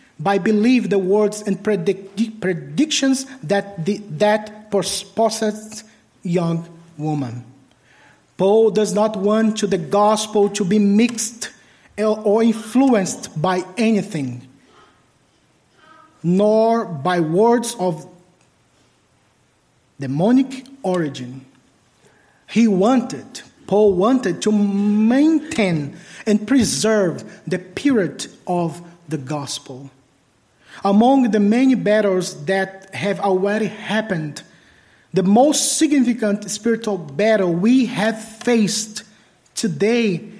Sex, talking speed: male, 90 wpm